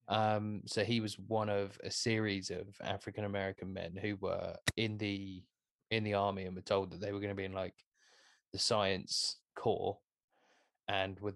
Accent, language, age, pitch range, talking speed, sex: British, English, 20-39, 100-125 Hz, 180 wpm, male